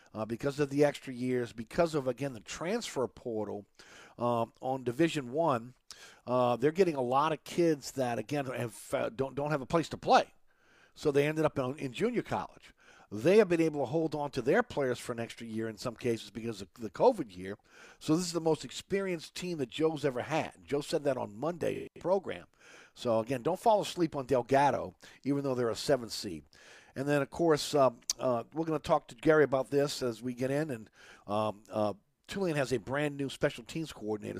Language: English